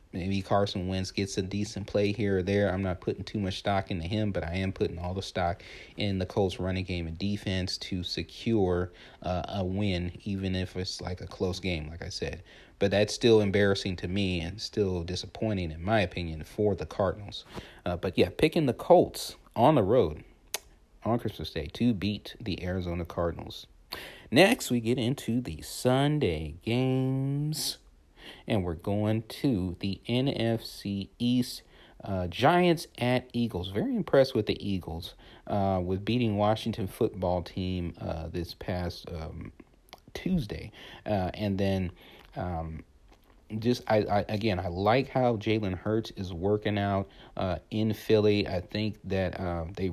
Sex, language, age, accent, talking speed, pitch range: male, English, 40-59, American, 165 wpm, 90-110 Hz